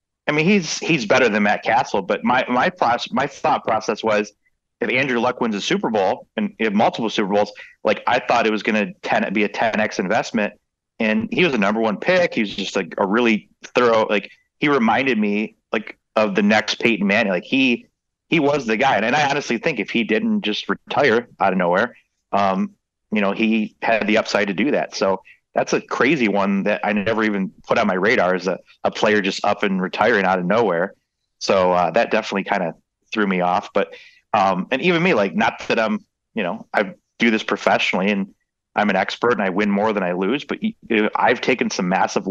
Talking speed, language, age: 220 wpm, English, 30-49